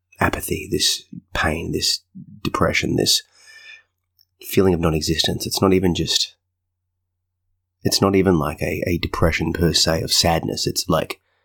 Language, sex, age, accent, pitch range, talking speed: English, male, 30-49, Australian, 80-95 Hz, 135 wpm